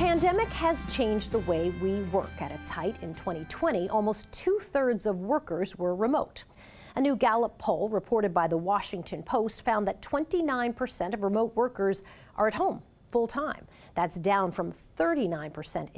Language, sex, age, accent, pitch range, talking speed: English, female, 40-59, American, 185-260 Hz, 165 wpm